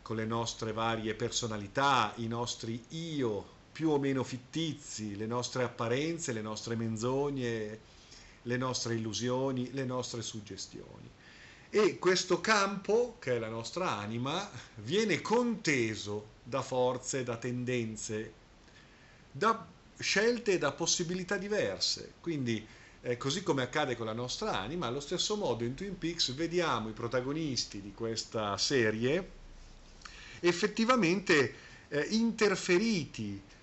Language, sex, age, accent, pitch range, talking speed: Italian, male, 50-69, native, 110-145 Hz, 120 wpm